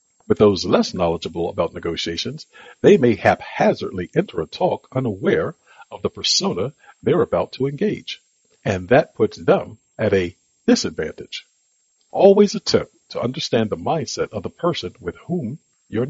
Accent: American